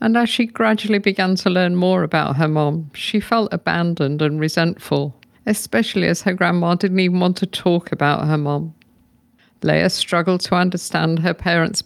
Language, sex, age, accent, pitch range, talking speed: English, female, 50-69, British, 155-195 Hz, 170 wpm